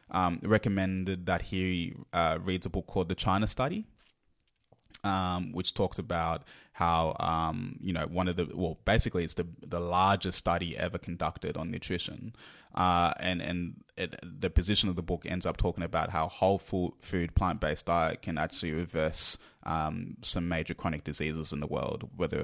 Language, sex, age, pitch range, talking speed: English, male, 20-39, 85-105 Hz, 175 wpm